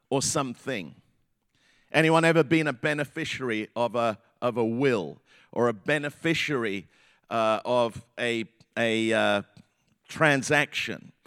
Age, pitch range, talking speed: 50-69, 135-175 Hz, 110 wpm